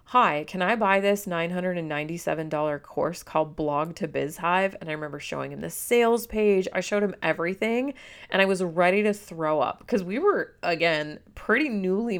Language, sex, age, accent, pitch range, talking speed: English, female, 30-49, American, 160-215 Hz, 175 wpm